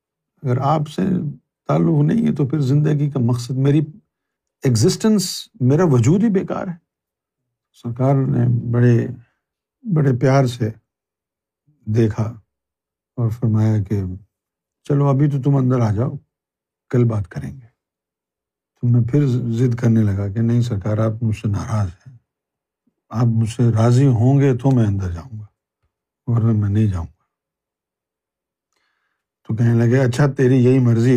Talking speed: 145 wpm